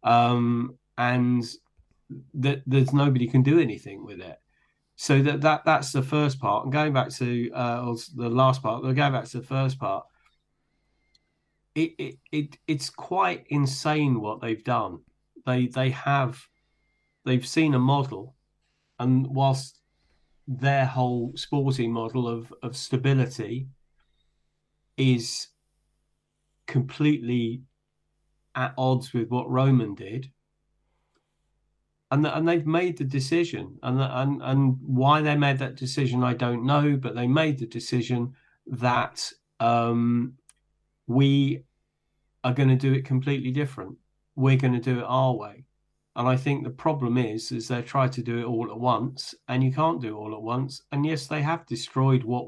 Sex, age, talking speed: male, 40-59, 150 wpm